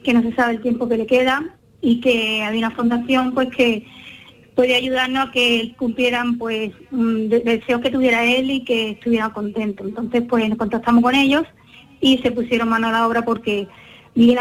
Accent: Spanish